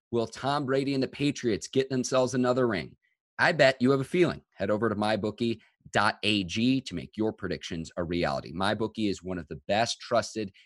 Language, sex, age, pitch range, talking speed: English, male, 30-49, 95-125 Hz, 185 wpm